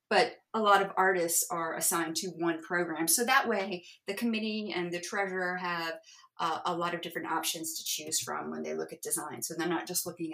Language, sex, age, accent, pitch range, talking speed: English, female, 30-49, American, 165-190 Hz, 220 wpm